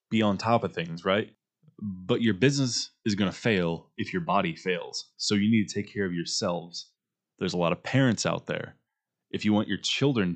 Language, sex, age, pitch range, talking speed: English, male, 20-39, 90-115 Hz, 215 wpm